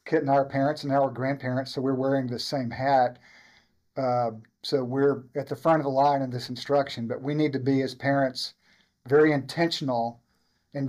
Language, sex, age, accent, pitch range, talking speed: English, male, 50-69, American, 130-145 Hz, 195 wpm